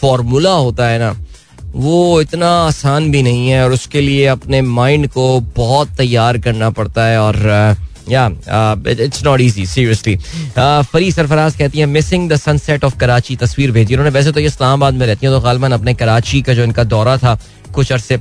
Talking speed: 190 wpm